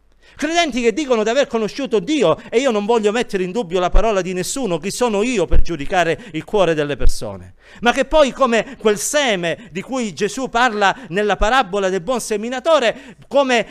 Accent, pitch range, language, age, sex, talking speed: native, 205-265 Hz, Italian, 50-69, male, 190 wpm